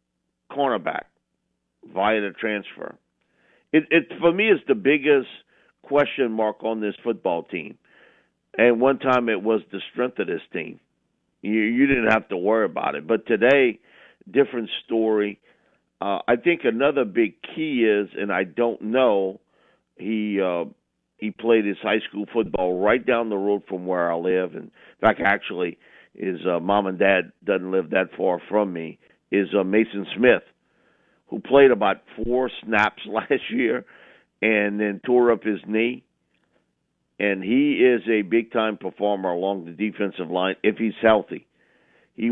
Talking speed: 160 wpm